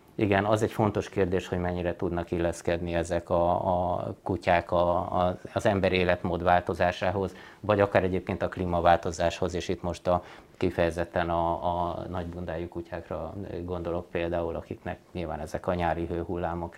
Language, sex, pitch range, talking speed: Hungarian, male, 90-105 Hz, 145 wpm